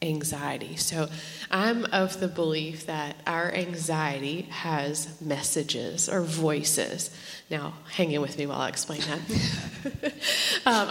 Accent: American